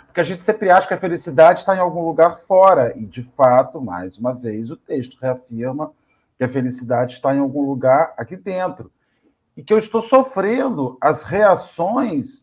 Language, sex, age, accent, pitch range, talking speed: Portuguese, male, 50-69, Brazilian, 130-190 Hz, 185 wpm